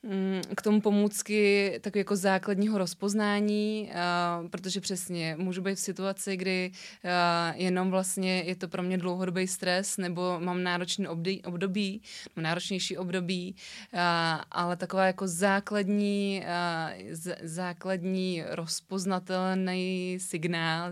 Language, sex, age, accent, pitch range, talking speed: Czech, female, 20-39, native, 175-190 Hz, 100 wpm